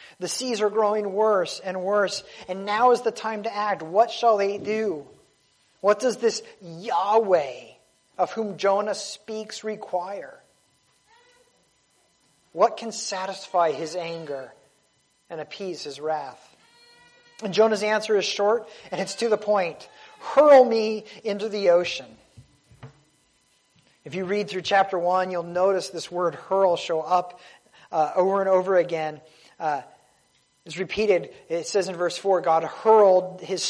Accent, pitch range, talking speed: American, 165-210 Hz, 140 wpm